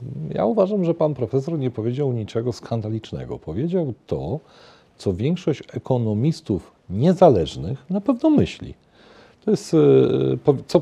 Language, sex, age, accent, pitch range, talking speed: Polish, male, 40-59, native, 90-140 Hz, 115 wpm